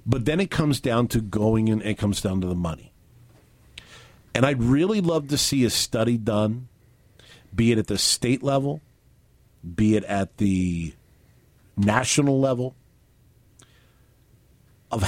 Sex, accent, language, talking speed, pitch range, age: male, American, English, 145 wpm, 110-150 Hz, 50-69